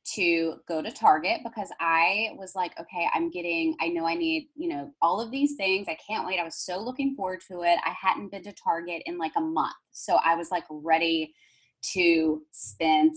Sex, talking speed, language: female, 215 wpm, English